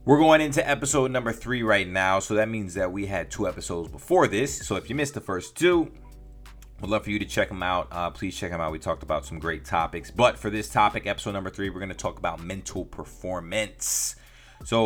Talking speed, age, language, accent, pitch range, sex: 240 wpm, 30-49, English, American, 80-105 Hz, male